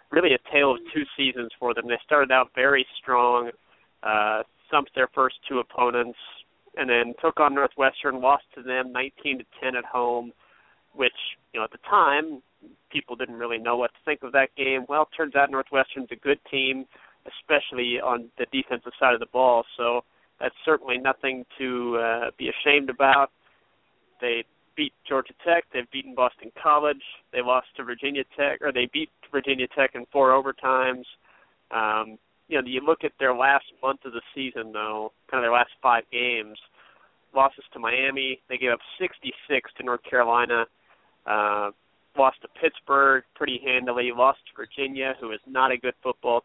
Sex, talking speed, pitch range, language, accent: male, 175 wpm, 120-135 Hz, English, American